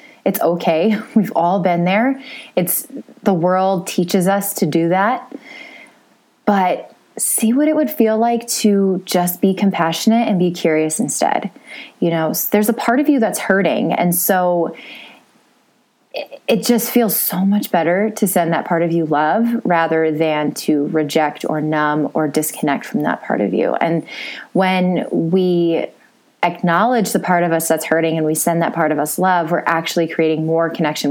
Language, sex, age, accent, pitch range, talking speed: English, female, 20-39, American, 160-220 Hz, 175 wpm